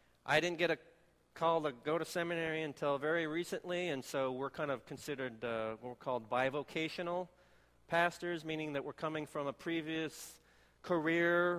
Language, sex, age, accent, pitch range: Korean, male, 40-59, American, 130-165 Hz